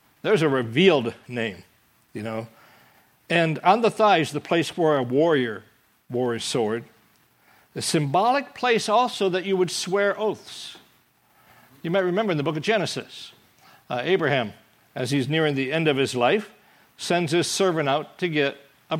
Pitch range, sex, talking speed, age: 130-180 Hz, male, 165 wpm, 60-79